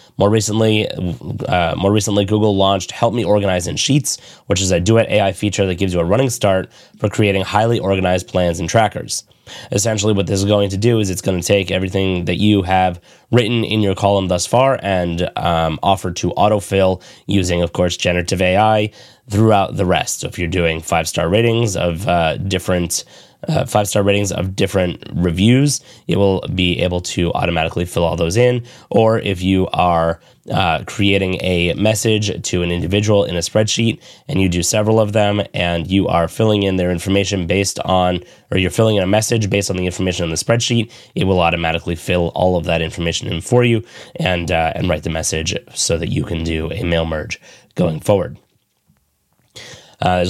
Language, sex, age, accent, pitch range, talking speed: English, male, 20-39, American, 90-105 Hz, 195 wpm